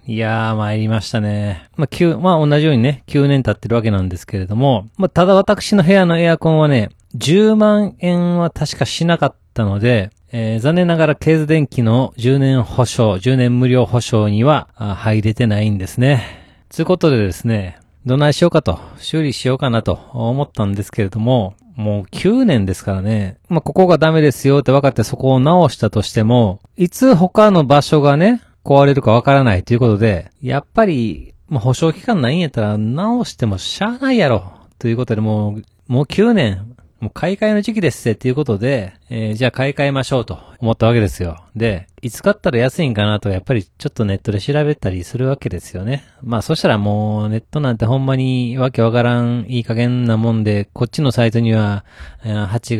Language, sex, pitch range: Japanese, male, 105-145 Hz